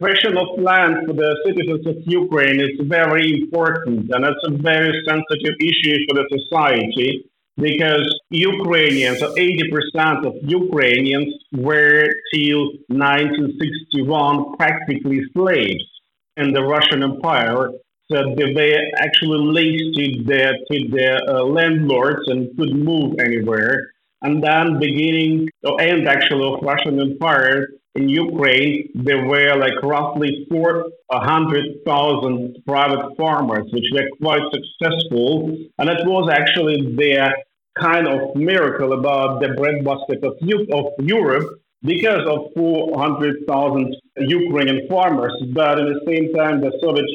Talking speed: 120 wpm